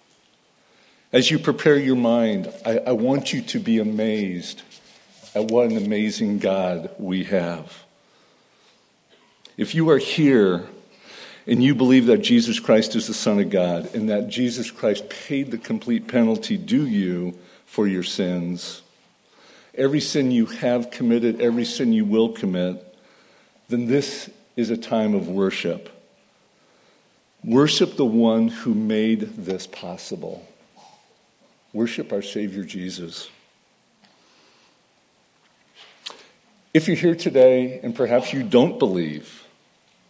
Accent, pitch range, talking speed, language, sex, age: American, 105-145 Hz, 125 wpm, English, male, 50-69